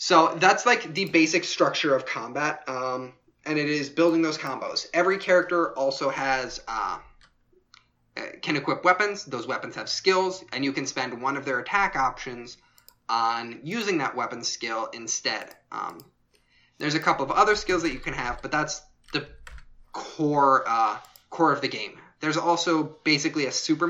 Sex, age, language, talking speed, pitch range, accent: male, 20-39, English, 170 wpm, 120-160 Hz, American